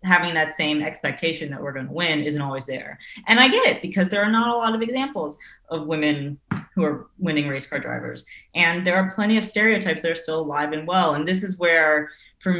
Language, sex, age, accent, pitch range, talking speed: English, female, 20-39, American, 145-175 Hz, 235 wpm